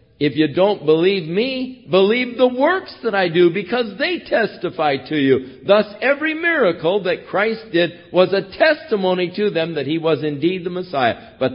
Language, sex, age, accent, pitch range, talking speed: English, male, 50-69, American, 110-165 Hz, 175 wpm